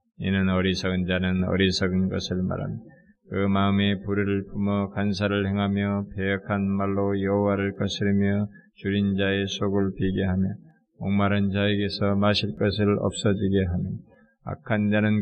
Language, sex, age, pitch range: Korean, male, 20-39, 95-100 Hz